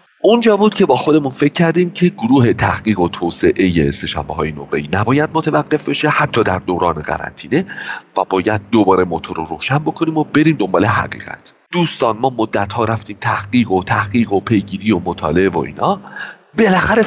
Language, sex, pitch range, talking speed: Persian, male, 105-160 Hz, 170 wpm